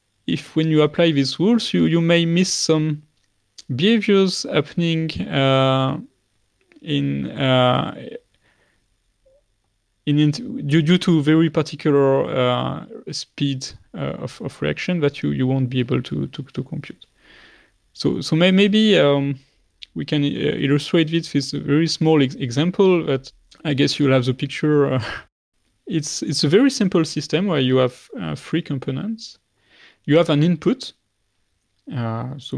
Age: 30-49